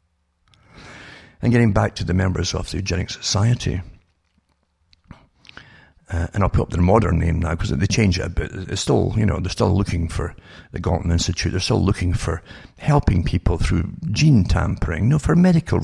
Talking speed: 185 wpm